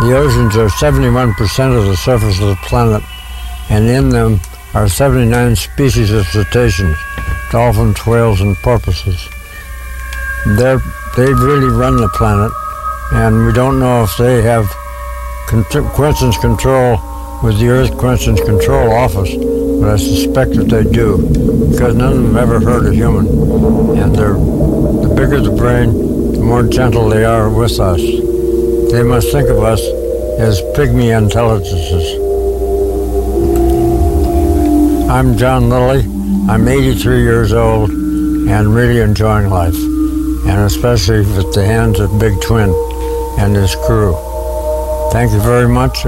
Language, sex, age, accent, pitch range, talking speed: English, male, 60-79, American, 100-130 Hz, 135 wpm